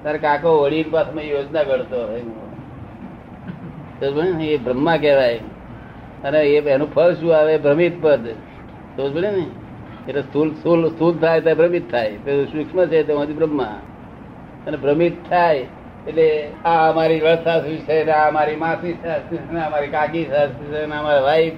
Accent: native